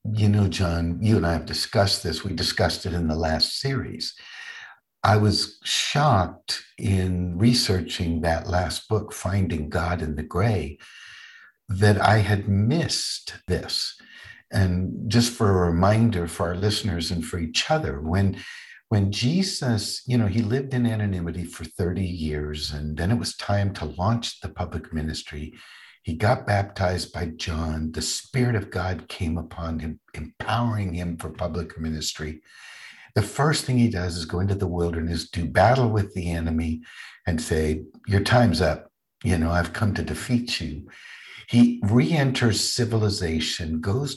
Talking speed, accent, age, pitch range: 160 wpm, American, 60-79, 80-110 Hz